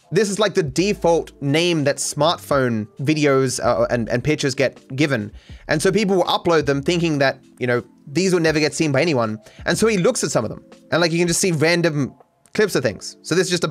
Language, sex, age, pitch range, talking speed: English, male, 20-39, 140-195 Hz, 240 wpm